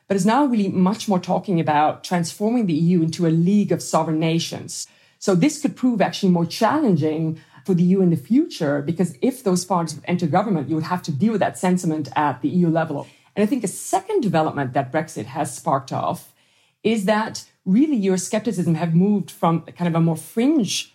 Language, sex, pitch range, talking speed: English, female, 155-205 Hz, 205 wpm